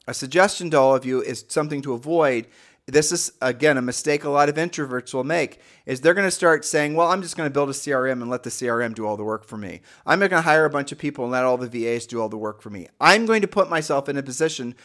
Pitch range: 125-160 Hz